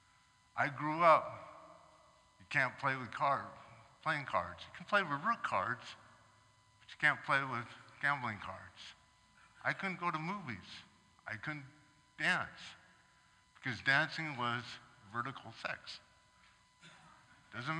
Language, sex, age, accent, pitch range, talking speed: English, male, 60-79, American, 115-165 Hz, 125 wpm